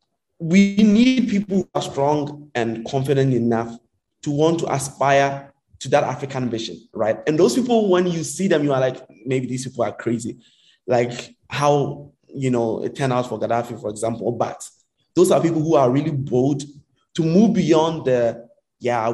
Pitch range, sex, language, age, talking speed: 115-150 Hz, male, English, 20-39, 180 wpm